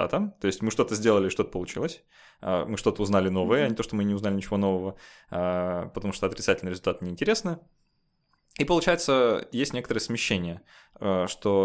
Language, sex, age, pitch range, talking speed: Russian, male, 20-39, 95-130 Hz, 160 wpm